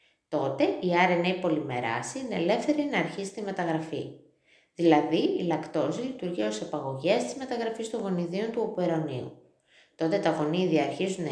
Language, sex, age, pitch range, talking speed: Greek, female, 20-39, 155-205 Hz, 150 wpm